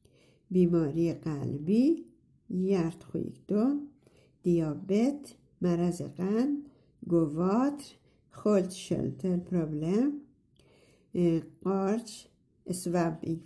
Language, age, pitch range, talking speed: Persian, 60-79, 170-240 Hz, 55 wpm